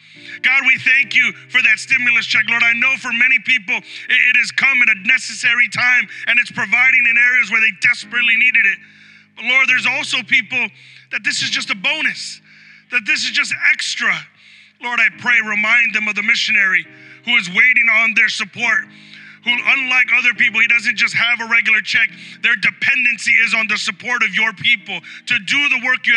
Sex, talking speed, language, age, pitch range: male, 195 wpm, English, 30-49, 220-255 Hz